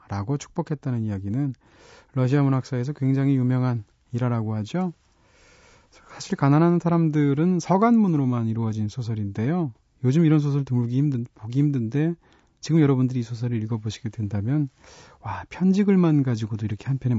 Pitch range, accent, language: 115-155 Hz, native, Korean